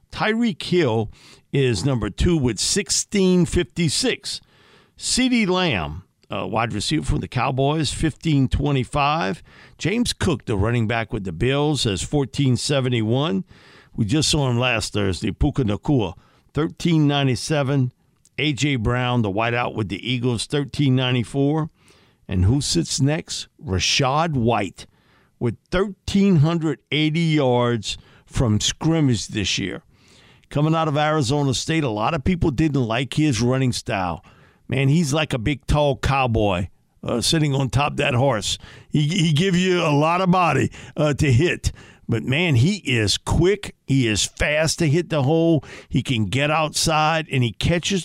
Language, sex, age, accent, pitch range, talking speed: English, male, 50-69, American, 120-160 Hz, 155 wpm